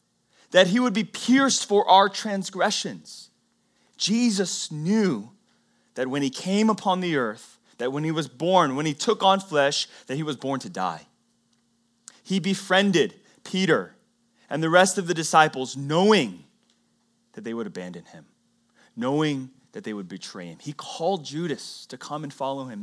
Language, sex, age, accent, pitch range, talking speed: English, male, 30-49, American, 125-205 Hz, 165 wpm